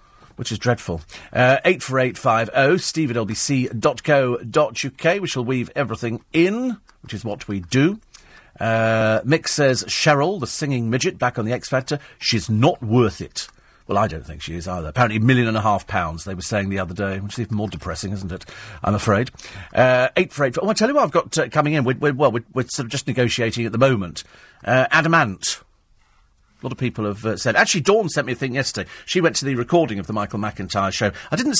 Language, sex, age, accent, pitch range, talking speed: English, male, 40-59, British, 110-145 Hz, 220 wpm